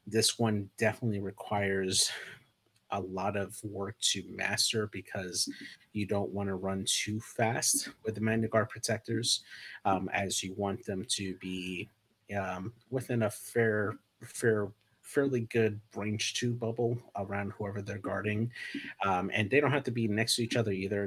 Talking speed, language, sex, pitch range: 155 wpm, English, male, 95-110 Hz